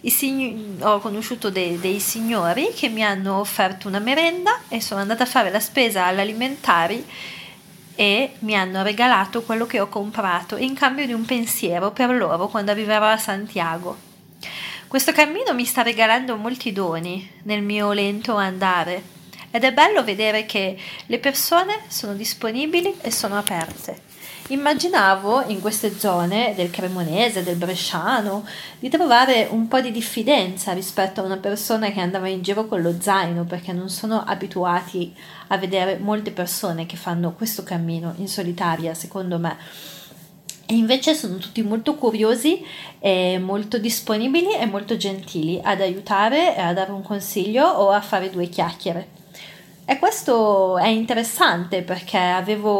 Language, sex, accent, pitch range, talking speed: Italian, female, native, 185-230 Hz, 150 wpm